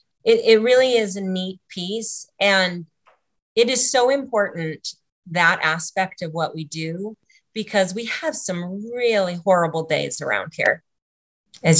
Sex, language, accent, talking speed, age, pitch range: female, English, American, 140 wpm, 30-49, 160-210 Hz